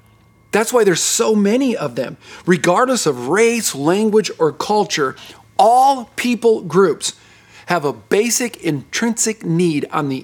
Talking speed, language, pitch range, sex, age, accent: 135 wpm, English, 110-180 Hz, male, 50-69, American